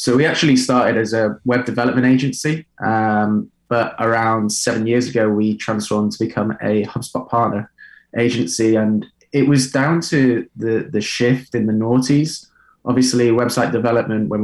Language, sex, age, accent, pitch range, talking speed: English, male, 20-39, British, 110-125 Hz, 160 wpm